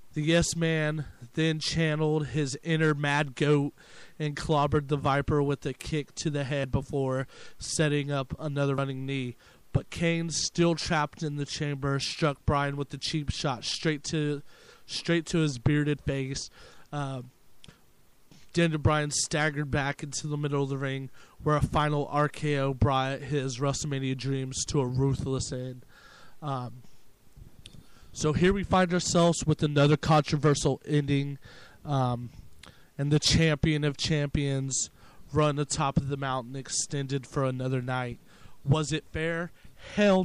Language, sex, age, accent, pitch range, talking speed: English, male, 30-49, American, 135-155 Hz, 145 wpm